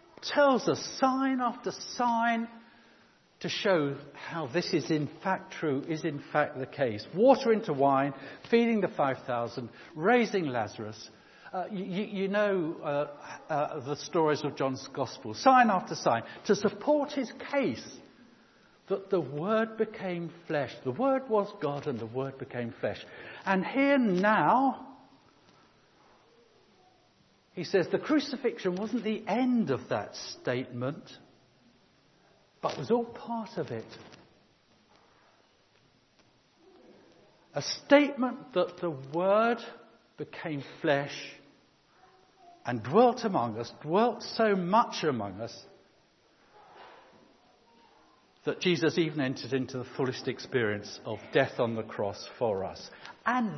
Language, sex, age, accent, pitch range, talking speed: English, male, 60-79, British, 140-230 Hz, 120 wpm